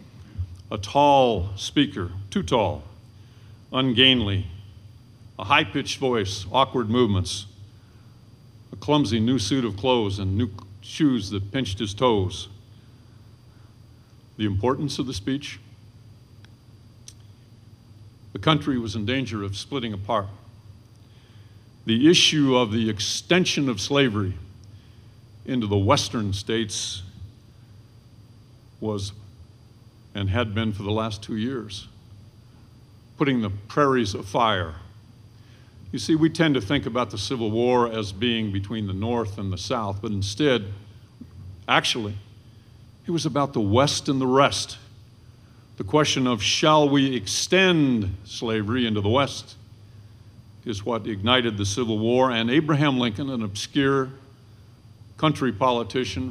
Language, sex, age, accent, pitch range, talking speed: English, male, 50-69, American, 105-125 Hz, 120 wpm